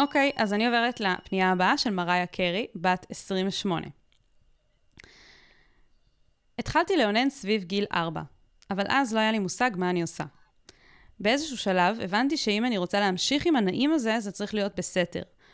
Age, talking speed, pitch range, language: 20-39, 155 wpm, 180-235 Hz, Hebrew